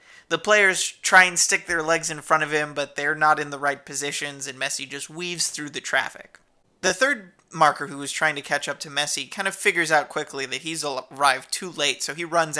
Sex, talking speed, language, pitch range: male, 235 wpm, English, 145-175 Hz